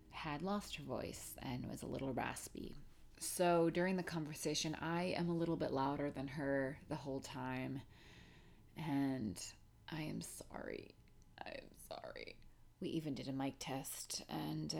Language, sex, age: English, female, 30-49